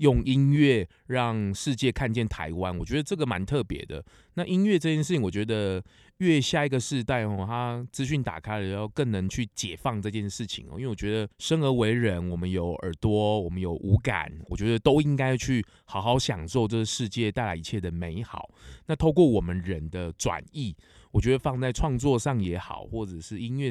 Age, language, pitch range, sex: 20-39, Chinese, 95-130 Hz, male